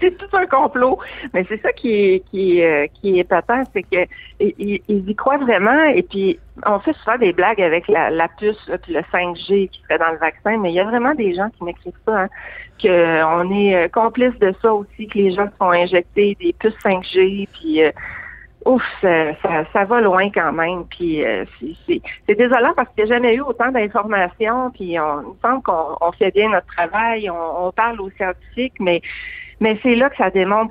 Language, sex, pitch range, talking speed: French, female, 175-220 Hz, 215 wpm